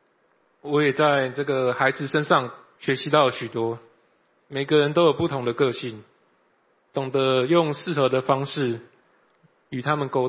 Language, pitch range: Chinese, 120-150 Hz